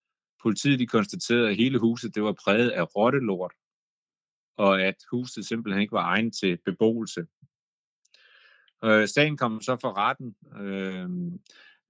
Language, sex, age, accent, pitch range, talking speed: Danish, male, 30-49, native, 95-120 Hz, 135 wpm